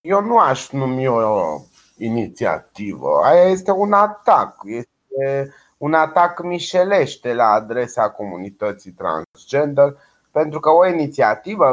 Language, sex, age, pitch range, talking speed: Romanian, male, 30-49, 120-165 Hz, 115 wpm